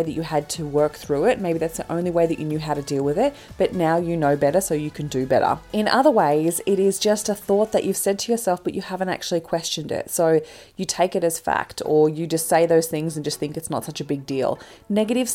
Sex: female